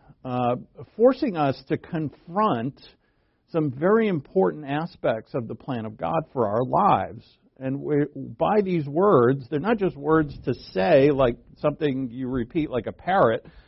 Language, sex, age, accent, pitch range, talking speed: English, male, 50-69, American, 130-170 Hz, 150 wpm